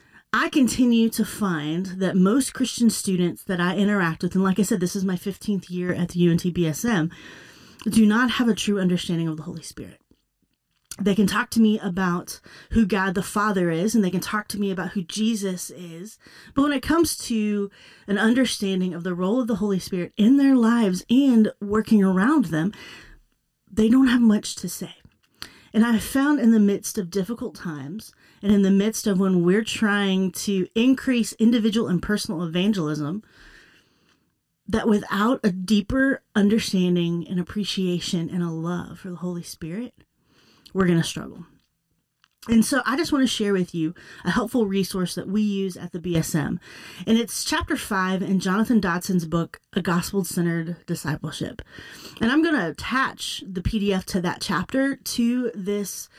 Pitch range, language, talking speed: 180-225 Hz, English, 175 wpm